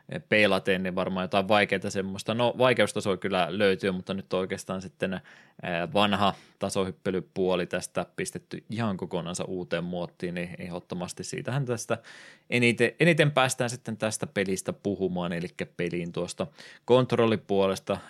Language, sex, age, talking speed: Finnish, male, 20-39, 125 wpm